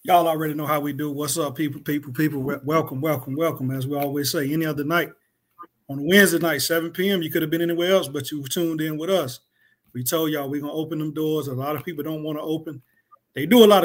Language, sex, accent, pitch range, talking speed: English, male, American, 150-175 Hz, 255 wpm